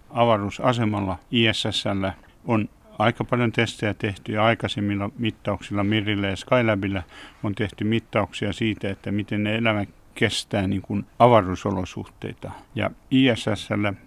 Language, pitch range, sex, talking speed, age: Finnish, 100-120 Hz, male, 110 wpm, 60-79